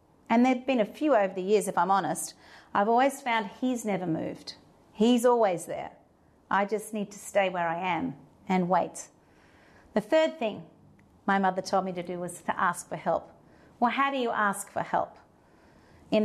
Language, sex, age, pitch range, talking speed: English, female, 40-59, 200-255 Hz, 190 wpm